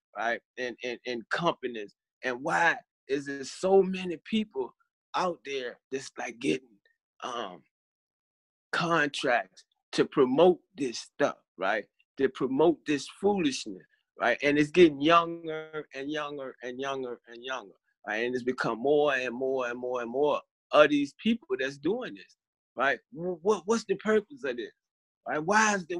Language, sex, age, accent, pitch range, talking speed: English, male, 30-49, American, 165-235 Hz, 155 wpm